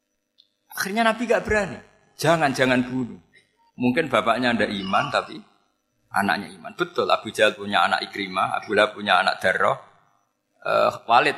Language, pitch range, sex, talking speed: Malay, 110-185 Hz, male, 135 wpm